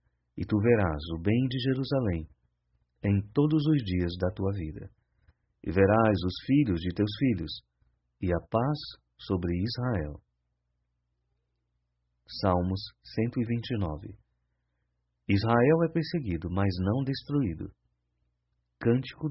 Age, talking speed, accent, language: 40-59, 110 wpm, Brazilian, Portuguese